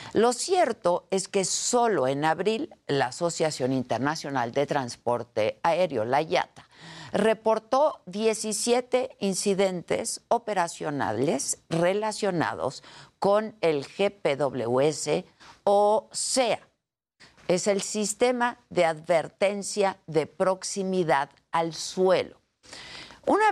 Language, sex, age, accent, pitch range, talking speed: Spanish, female, 50-69, Mexican, 155-215 Hz, 90 wpm